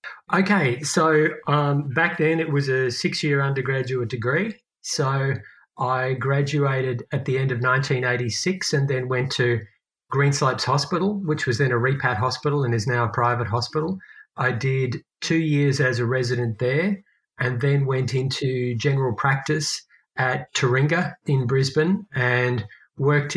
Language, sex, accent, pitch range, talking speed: English, male, Australian, 130-155 Hz, 145 wpm